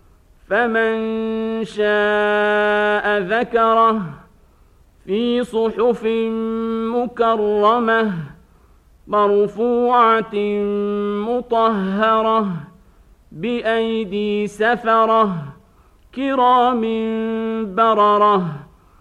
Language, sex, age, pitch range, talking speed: Arabic, male, 50-69, 210-240 Hz, 40 wpm